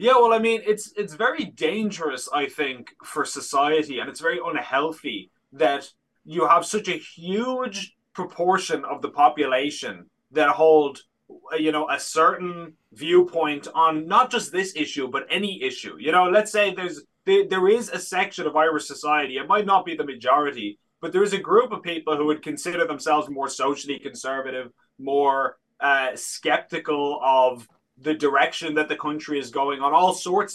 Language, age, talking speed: English, 20-39, 175 wpm